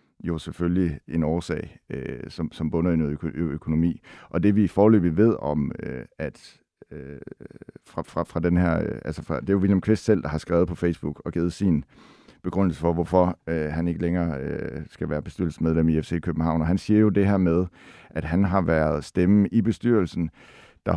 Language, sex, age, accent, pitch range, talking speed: Danish, male, 60-79, native, 80-95 Hz, 220 wpm